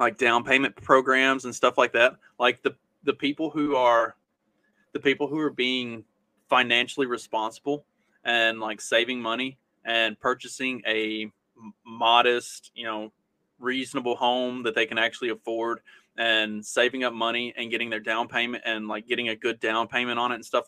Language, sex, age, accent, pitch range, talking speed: English, male, 30-49, American, 115-135 Hz, 170 wpm